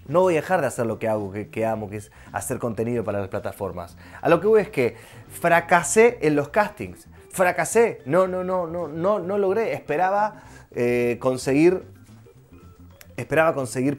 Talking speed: 180 wpm